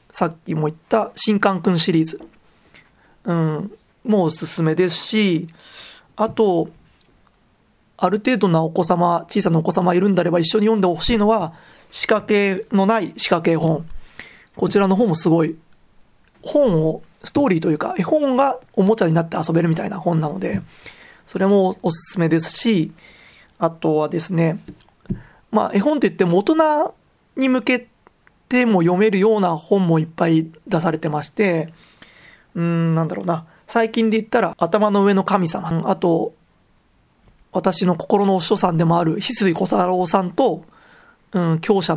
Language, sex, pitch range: Japanese, male, 170-215 Hz